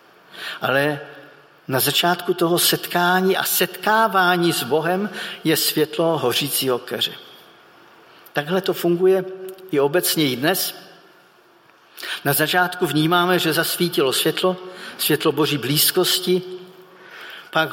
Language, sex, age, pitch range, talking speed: Czech, male, 50-69, 160-195 Hz, 100 wpm